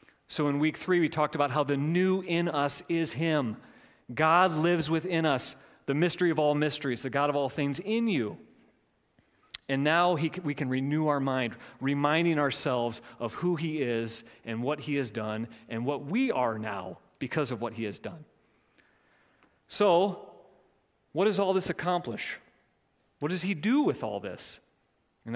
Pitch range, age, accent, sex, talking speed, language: 115-155 Hz, 40-59, American, male, 175 wpm, English